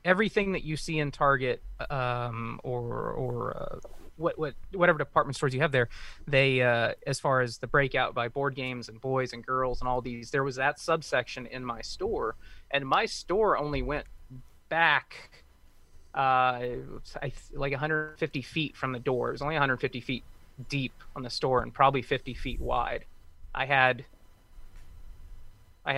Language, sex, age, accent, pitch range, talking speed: English, male, 30-49, American, 120-140 Hz, 165 wpm